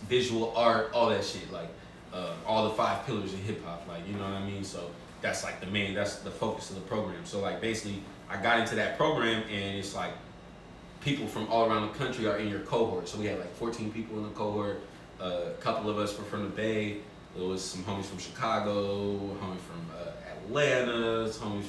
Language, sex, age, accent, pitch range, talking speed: English, male, 20-39, American, 100-115 Hz, 225 wpm